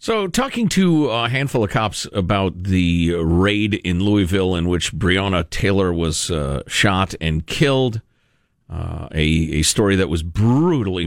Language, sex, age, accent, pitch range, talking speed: English, male, 50-69, American, 90-115 Hz, 150 wpm